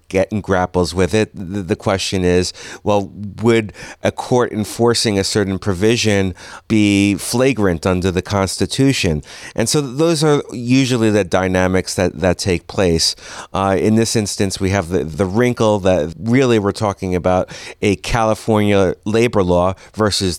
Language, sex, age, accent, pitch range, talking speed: English, male, 30-49, American, 95-110 Hz, 145 wpm